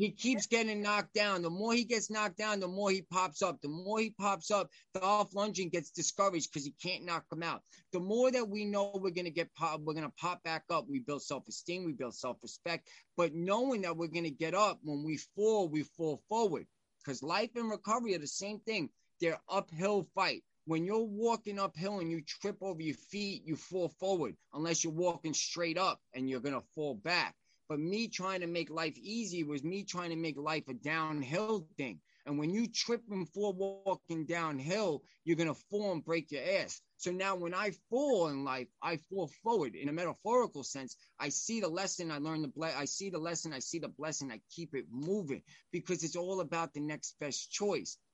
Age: 20-39